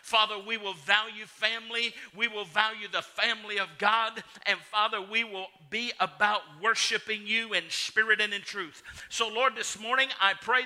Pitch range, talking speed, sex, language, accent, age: 180-225 Hz, 175 wpm, male, English, American, 50-69